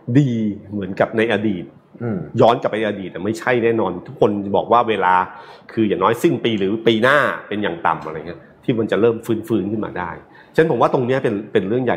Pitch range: 100-120 Hz